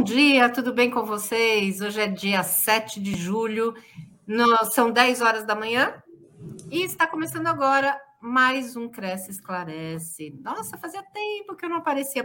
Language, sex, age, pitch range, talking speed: Portuguese, female, 50-69, 195-265 Hz, 155 wpm